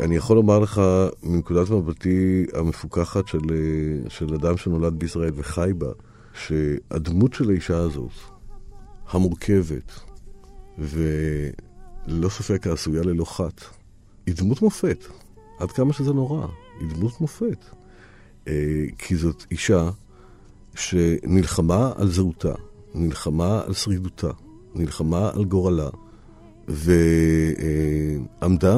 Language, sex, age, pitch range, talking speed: Hebrew, male, 50-69, 80-105 Hz, 95 wpm